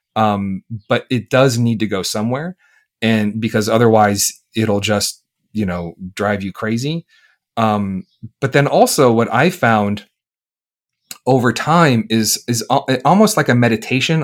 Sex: male